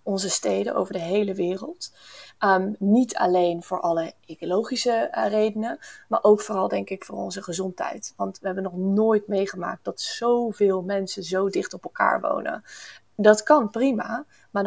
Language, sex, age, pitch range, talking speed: Dutch, female, 20-39, 195-230 Hz, 165 wpm